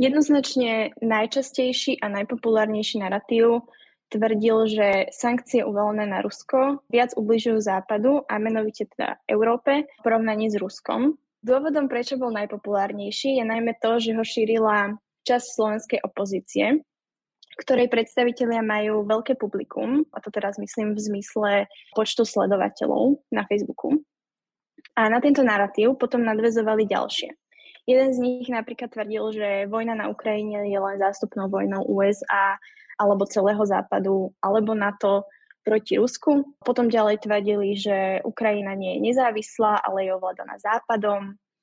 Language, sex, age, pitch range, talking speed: Slovak, female, 10-29, 205-240 Hz, 130 wpm